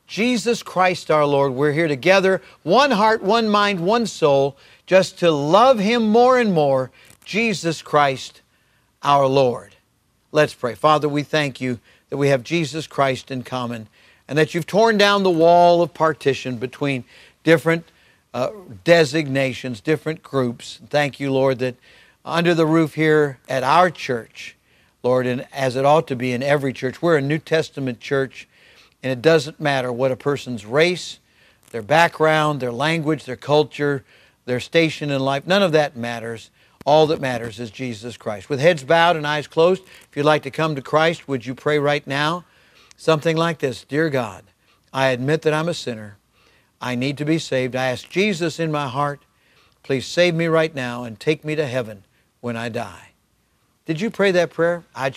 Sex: male